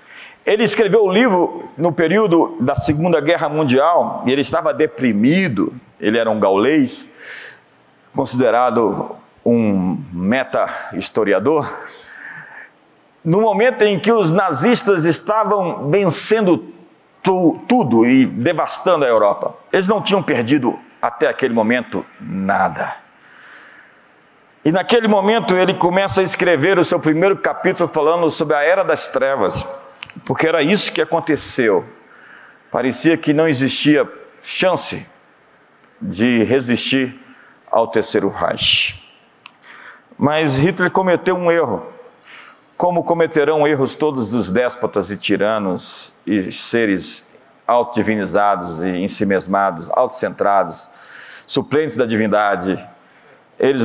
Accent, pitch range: Brazilian, 130-190 Hz